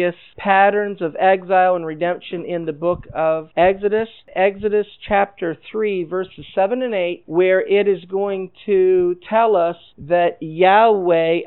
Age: 50-69